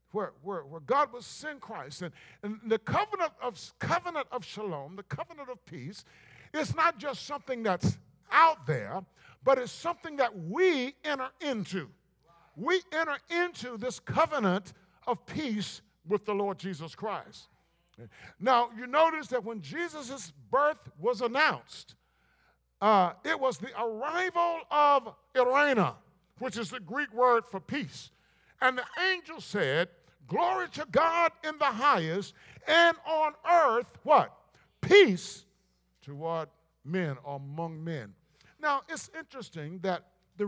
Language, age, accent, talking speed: English, 50-69, American, 135 wpm